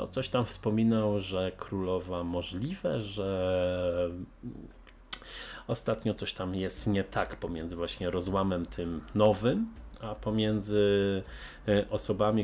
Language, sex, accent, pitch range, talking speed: Polish, male, native, 90-110 Hz, 105 wpm